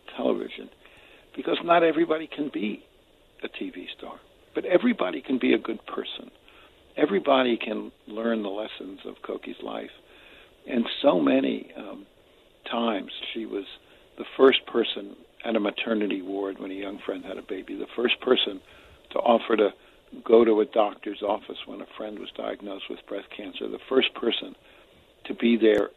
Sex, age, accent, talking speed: male, 60-79, American, 160 wpm